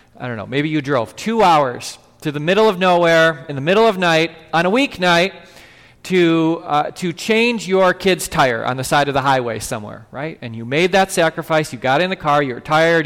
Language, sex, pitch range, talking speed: English, male, 155-215 Hz, 230 wpm